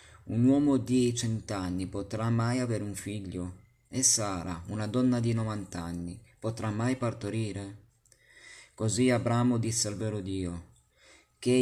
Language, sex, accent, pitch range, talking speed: Italian, male, native, 100-120 Hz, 130 wpm